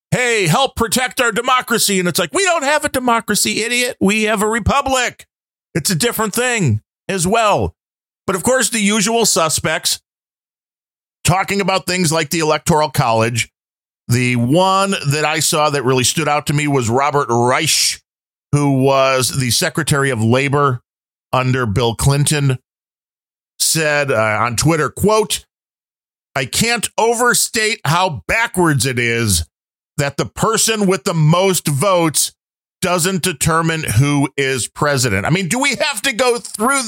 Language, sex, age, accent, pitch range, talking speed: English, male, 40-59, American, 125-205 Hz, 150 wpm